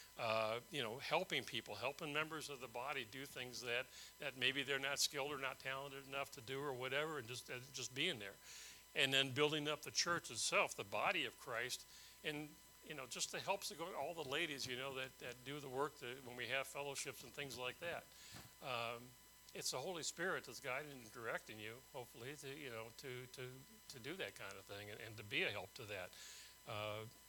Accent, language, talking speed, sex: American, English, 220 wpm, male